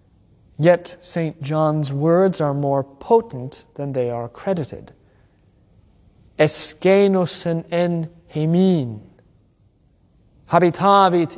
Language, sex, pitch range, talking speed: English, male, 105-170 Hz, 80 wpm